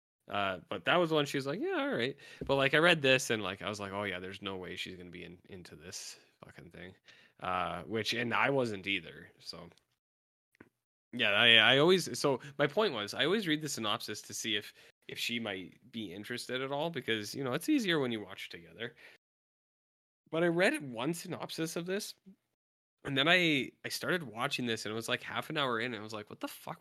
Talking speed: 230 wpm